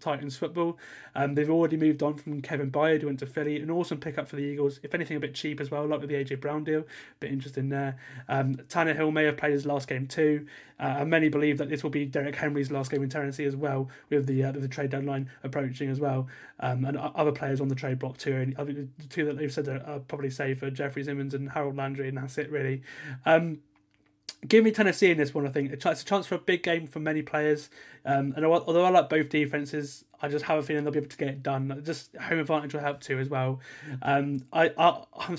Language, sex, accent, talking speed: English, male, British, 265 wpm